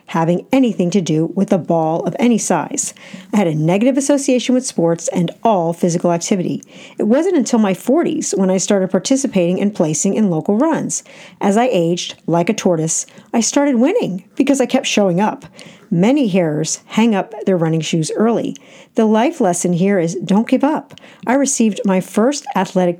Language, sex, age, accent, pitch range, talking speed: English, female, 50-69, American, 180-255 Hz, 185 wpm